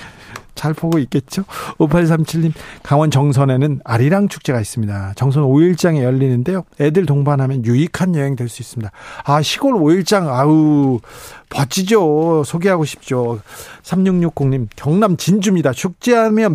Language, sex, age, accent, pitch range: Korean, male, 40-59, native, 135-175 Hz